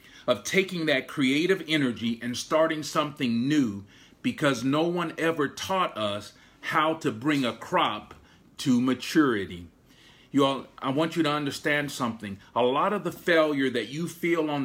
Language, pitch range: English, 120-160 Hz